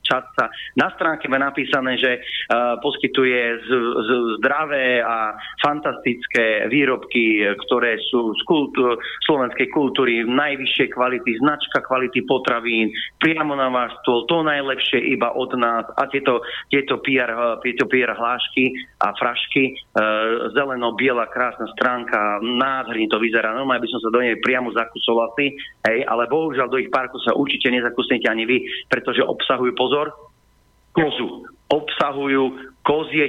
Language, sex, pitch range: Slovak, male, 120-145 Hz